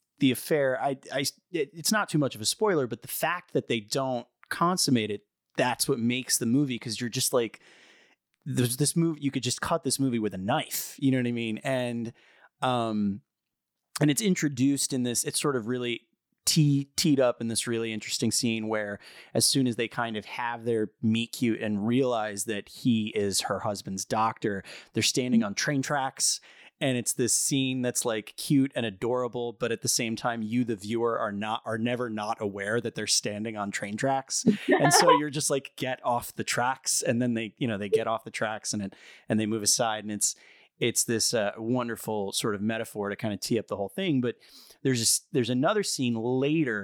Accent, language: American, English